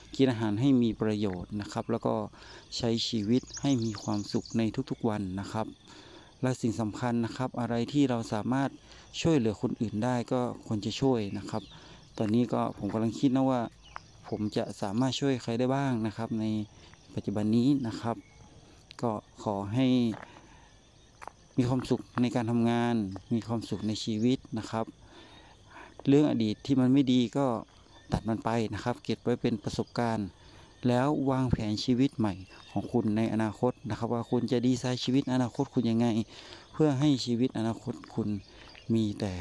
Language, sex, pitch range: Thai, male, 110-125 Hz